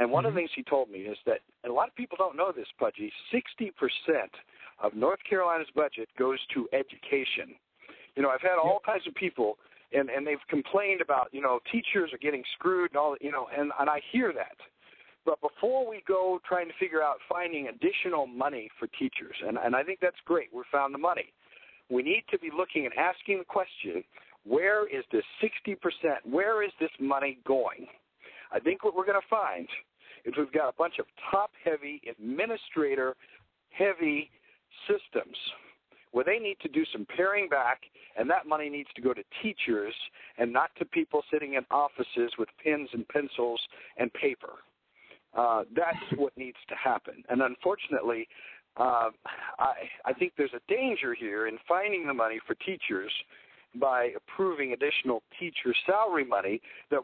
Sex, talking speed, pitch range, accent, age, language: male, 180 wpm, 140-215 Hz, American, 50-69, English